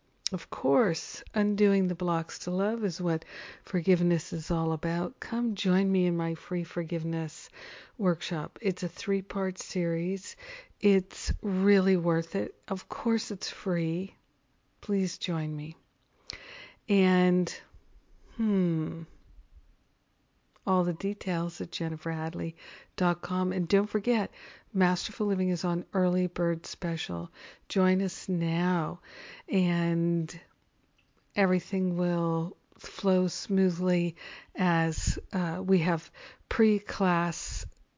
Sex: female